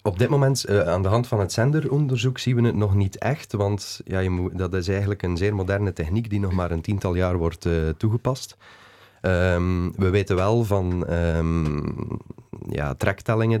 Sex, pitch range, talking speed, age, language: male, 85-100 Hz, 195 wpm, 30-49, Dutch